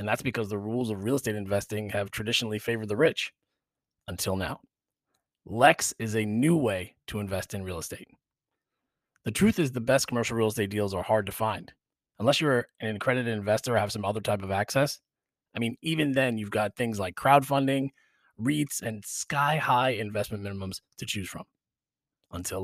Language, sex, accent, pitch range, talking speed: English, male, American, 105-135 Hz, 185 wpm